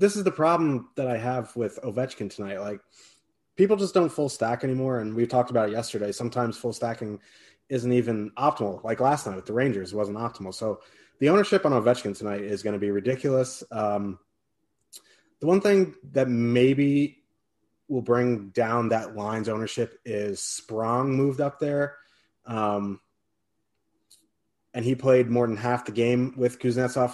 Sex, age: male, 30-49